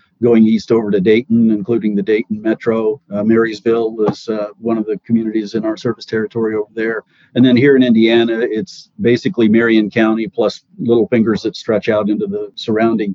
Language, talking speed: English, 185 wpm